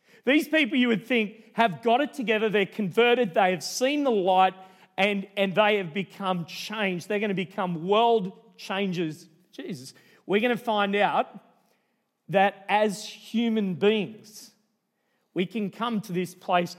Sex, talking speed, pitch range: male, 155 wpm, 165-215 Hz